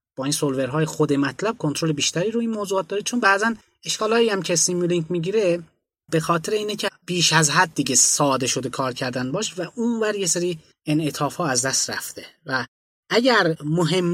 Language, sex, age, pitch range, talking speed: Persian, male, 20-39, 140-180 Hz, 185 wpm